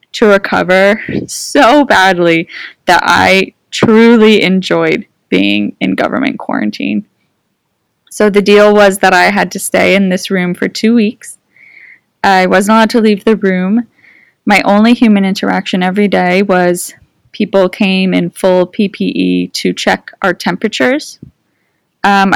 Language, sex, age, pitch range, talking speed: English, female, 20-39, 185-230 Hz, 140 wpm